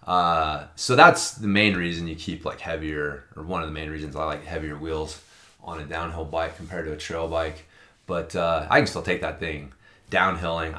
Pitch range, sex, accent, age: 80-105 Hz, male, American, 20-39